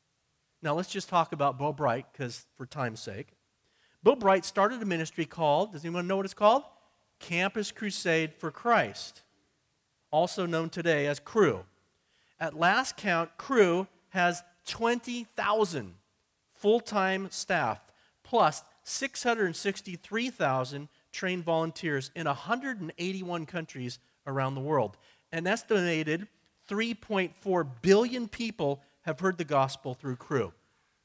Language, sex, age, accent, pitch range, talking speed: English, male, 40-59, American, 140-195 Hz, 120 wpm